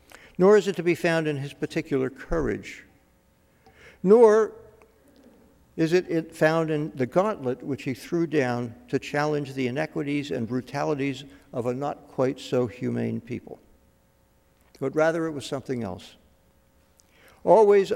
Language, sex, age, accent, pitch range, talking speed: English, male, 60-79, American, 120-160 Hz, 125 wpm